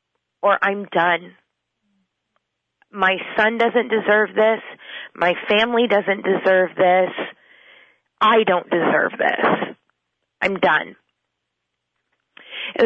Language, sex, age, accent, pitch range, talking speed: English, female, 30-49, American, 170-210 Hz, 90 wpm